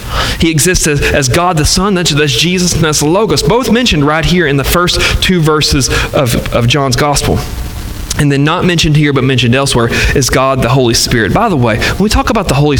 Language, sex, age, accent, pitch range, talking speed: English, male, 30-49, American, 130-190 Hz, 230 wpm